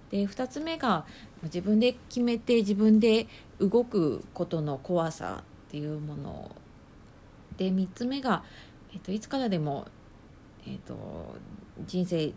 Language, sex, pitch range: Japanese, female, 160-215 Hz